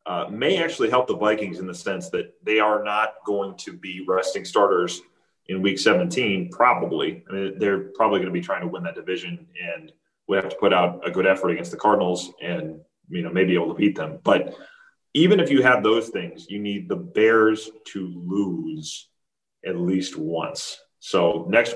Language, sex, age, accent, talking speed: English, male, 30-49, American, 200 wpm